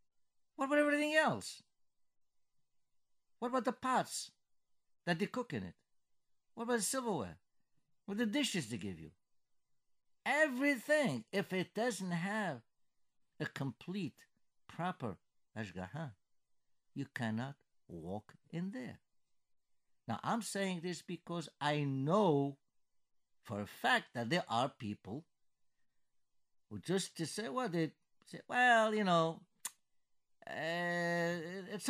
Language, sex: English, male